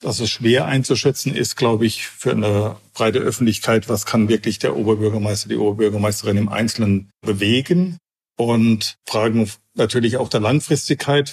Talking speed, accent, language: 145 wpm, German, German